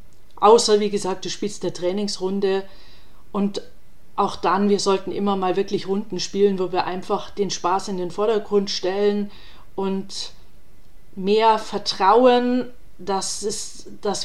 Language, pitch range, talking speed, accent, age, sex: German, 185-215 Hz, 130 wpm, German, 40-59, female